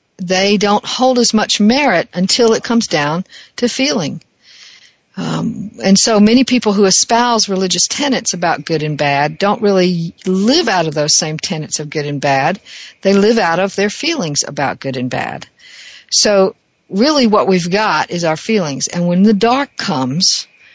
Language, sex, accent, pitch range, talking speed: English, female, American, 170-225 Hz, 175 wpm